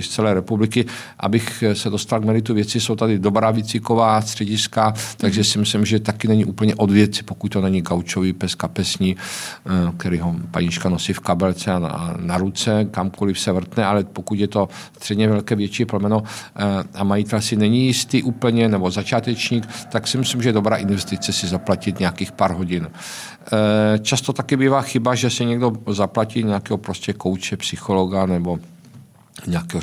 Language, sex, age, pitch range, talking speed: Czech, male, 50-69, 95-115 Hz, 165 wpm